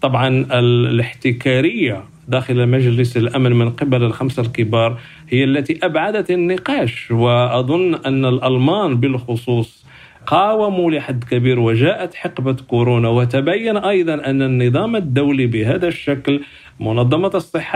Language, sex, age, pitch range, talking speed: Arabic, male, 50-69, 130-160 Hz, 110 wpm